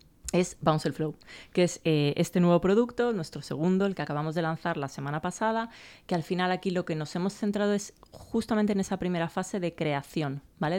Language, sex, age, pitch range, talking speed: Spanish, female, 20-39, 150-180 Hz, 210 wpm